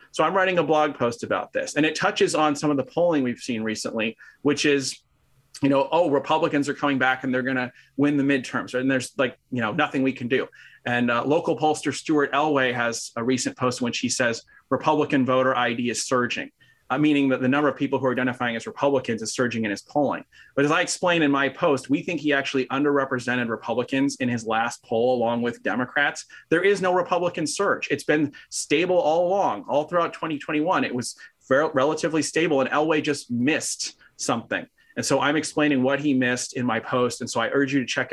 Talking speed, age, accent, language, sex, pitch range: 215 wpm, 30-49, American, English, male, 130-155 Hz